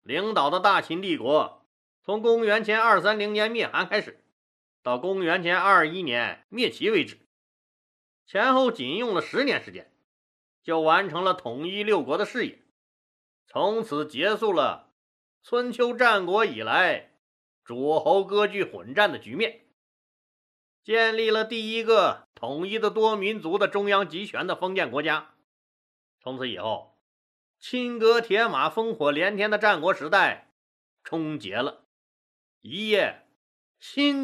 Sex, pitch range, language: male, 160-225 Hz, Chinese